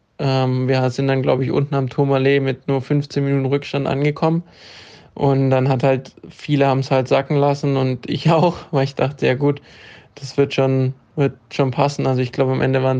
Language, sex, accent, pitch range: German, male, German, 135-145 Hz